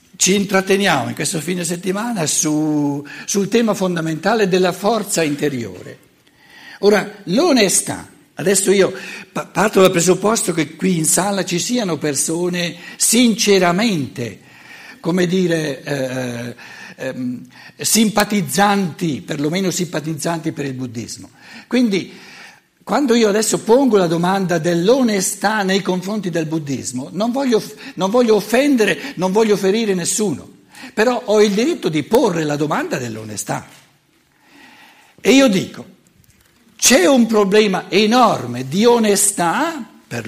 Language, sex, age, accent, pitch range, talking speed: Italian, male, 60-79, native, 150-210 Hz, 115 wpm